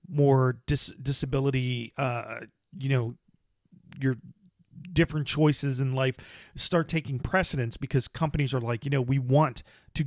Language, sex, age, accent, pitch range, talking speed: English, male, 40-59, American, 125-155 Hz, 130 wpm